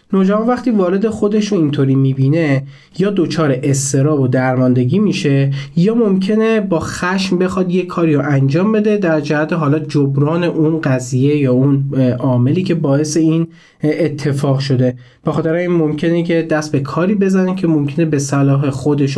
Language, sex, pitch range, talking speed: Persian, male, 140-180 Hz, 155 wpm